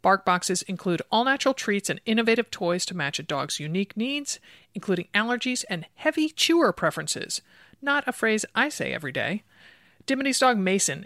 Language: English